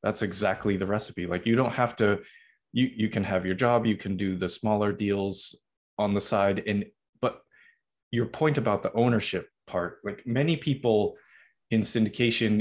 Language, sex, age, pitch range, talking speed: English, male, 20-39, 95-120 Hz, 175 wpm